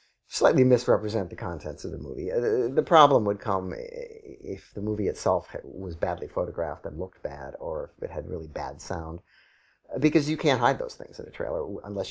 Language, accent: English, American